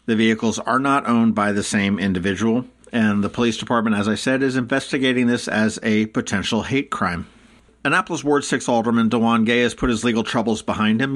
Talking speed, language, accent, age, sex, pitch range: 200 wpm, English, American, 50-69, male, 110-135 Hz